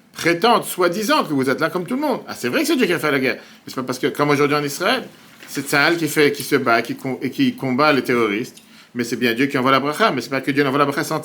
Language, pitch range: French, 135-210 Hz